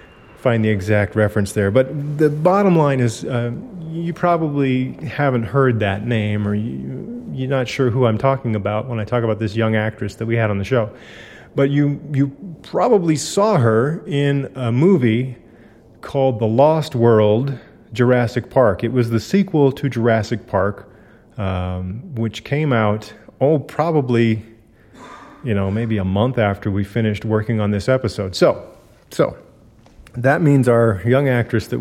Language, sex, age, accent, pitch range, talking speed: English, male, 30-49, American, 110-135 Hz, 165 wpm